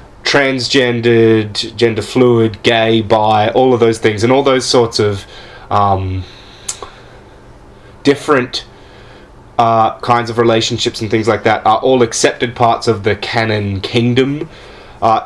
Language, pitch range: English, 110-135 Hz